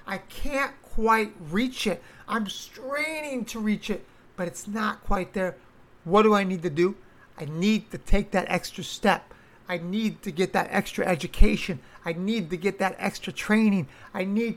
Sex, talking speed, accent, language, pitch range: male, 180 wpm, American, English, 180-220 Hz